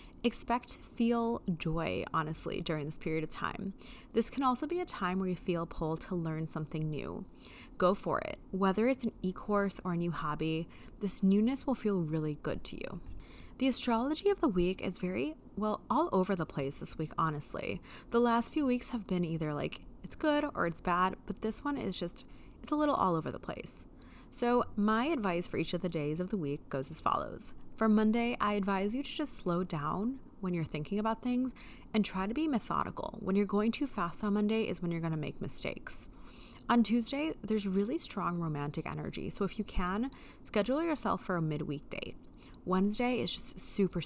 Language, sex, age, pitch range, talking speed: English, female, 20-39, 165-225 Hz, 205 wpm